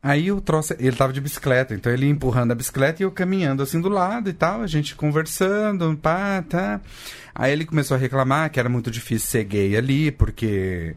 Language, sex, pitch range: Portuguese, male, 105-155 Hz